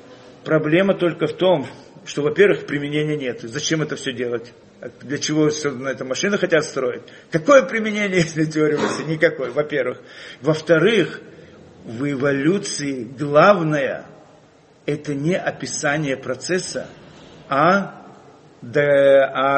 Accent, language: native, Russian